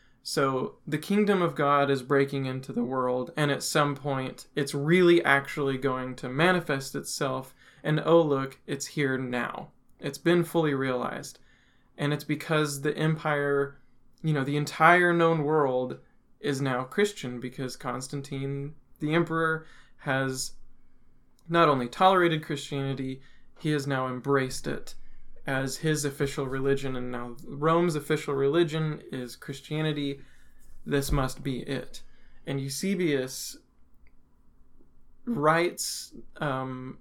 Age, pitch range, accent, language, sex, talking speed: 20-39, 135-155 Hz, American, English, male, 125 wpm